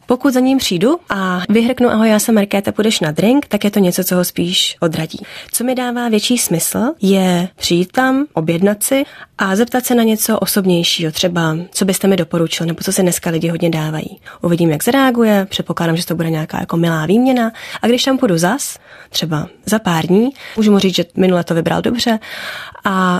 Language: Czech